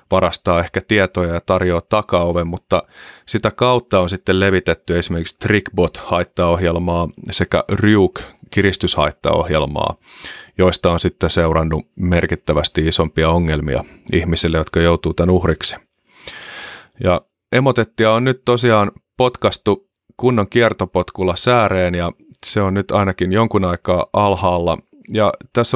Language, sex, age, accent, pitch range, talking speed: Finnish, male, 30-49, native, 85-105 Hz, 110 wpm